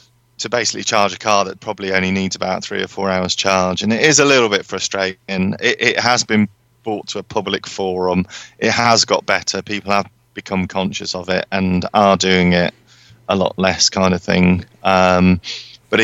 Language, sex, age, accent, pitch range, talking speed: English, male, 30-49, British, 95-105 Hz, 200 wpm